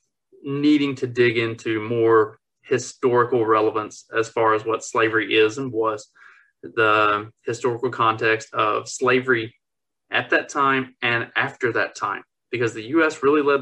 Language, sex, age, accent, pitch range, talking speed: English, male, 20-39, American, 115-145 Hz, 140 wpm